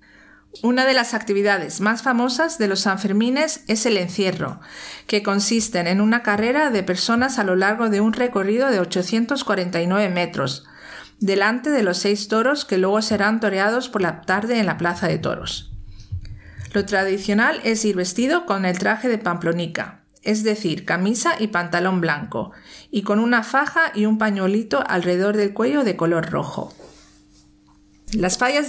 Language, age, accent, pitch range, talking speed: Spanish, 50-69, Spanish, 175-235 Hz, 160 wpm